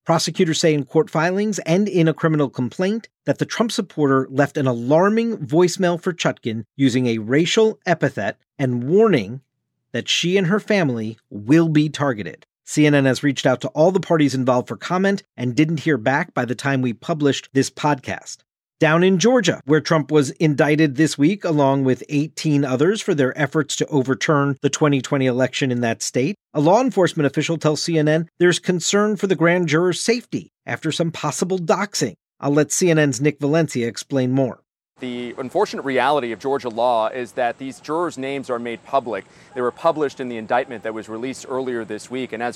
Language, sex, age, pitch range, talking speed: English, male, 40-59, 130-160 Hz, 185 wpm